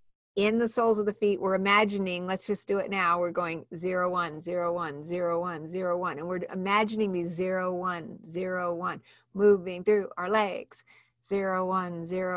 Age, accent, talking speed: 50-69, American, 145 wpm